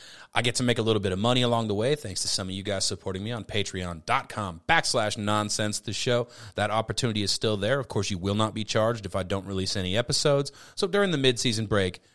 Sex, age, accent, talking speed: male, 30-49, American, 240 wpm